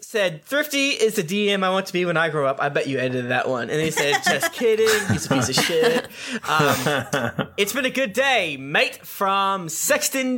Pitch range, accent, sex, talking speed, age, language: 150-210 Hz, American, male, 220 wpm, 20-39, English